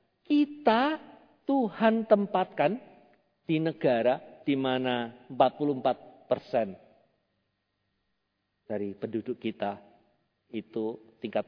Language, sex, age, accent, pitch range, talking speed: Indonesian, male, 50-69, native, 120-180 Hz, 75 wpm